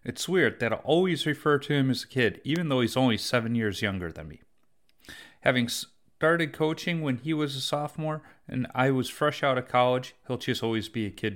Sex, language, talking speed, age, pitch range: male, English, 215 wpm, 30-49, 115-150 Hz